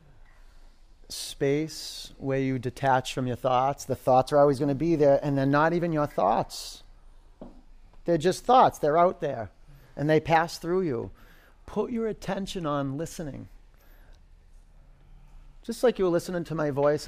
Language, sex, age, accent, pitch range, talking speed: English, male, 40-59, American, 125-165 Hz, 160 wpm